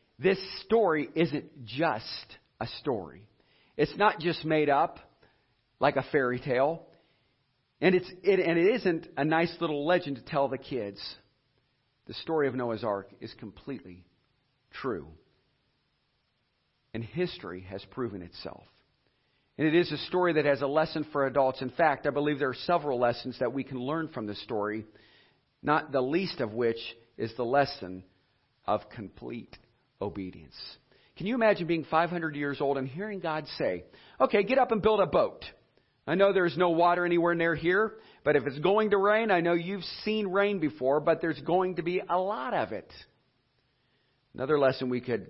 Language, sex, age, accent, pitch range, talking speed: English, male, 50-69, American, 125-170 Hz, 170 wpm